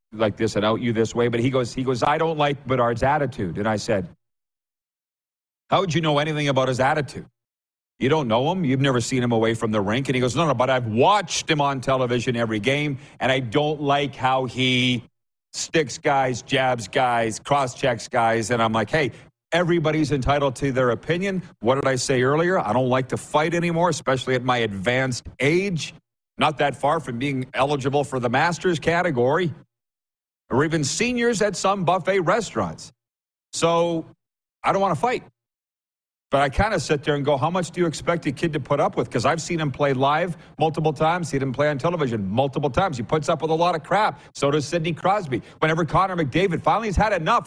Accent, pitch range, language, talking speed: American, 125-170 Hz, English, 210 wpm